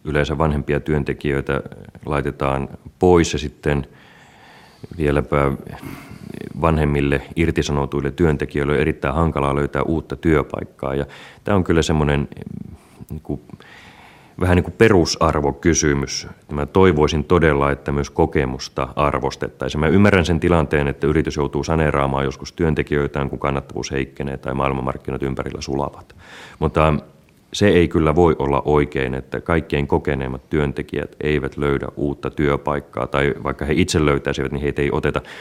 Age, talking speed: 30-49, 125 wpm